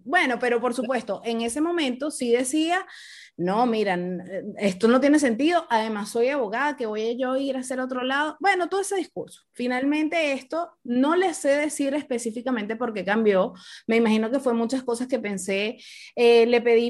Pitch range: 220-280 Hz